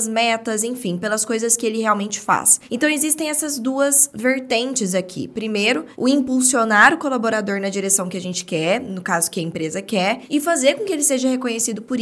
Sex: female